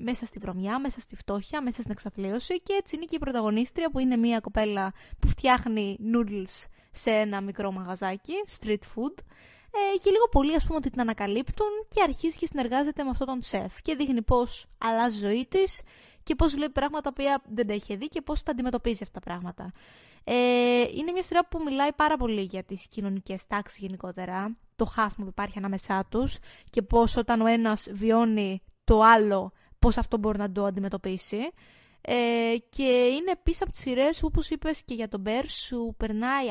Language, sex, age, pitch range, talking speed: Greek, female, 20-39, 215-275 Hz, 180 wpm